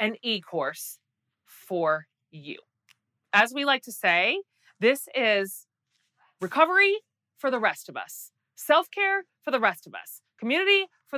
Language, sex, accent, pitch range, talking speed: English, female, American, 195-290 Hz, 135 wpm